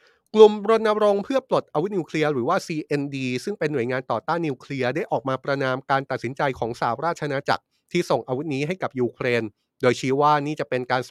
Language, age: Thai, 30-49